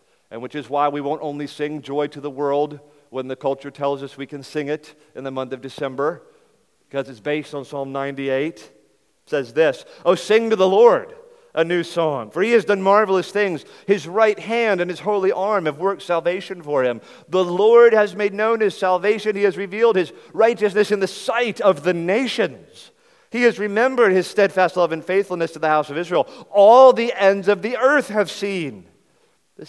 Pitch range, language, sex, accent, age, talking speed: 135-195 Hz, English, male, American, 40-59, 205 wpm